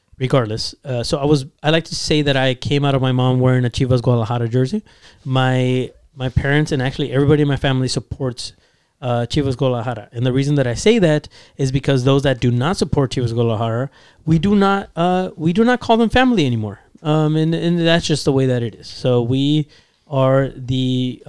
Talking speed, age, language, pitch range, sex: 215 wpm, 30-49, English, 125-155 Hz, male